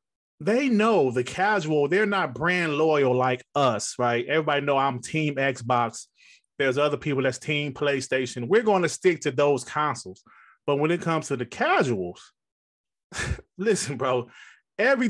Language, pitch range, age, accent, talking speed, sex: English, 130-205 Hz, 30-49, American, 155 wpm, male